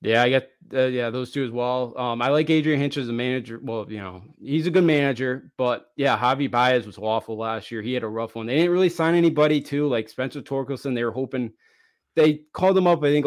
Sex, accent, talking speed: male, American, 250 wpm